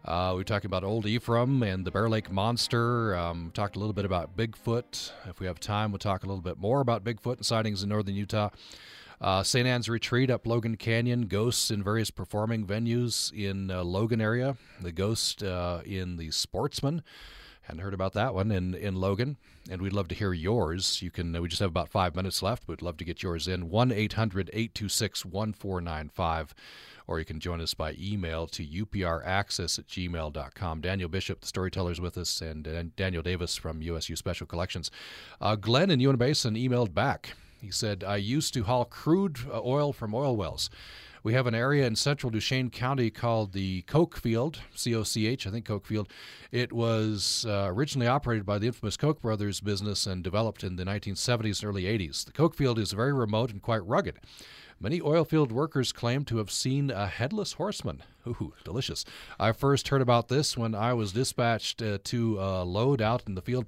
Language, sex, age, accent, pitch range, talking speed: English, male, 40-59, American, 95-120 Hz, 200 wpm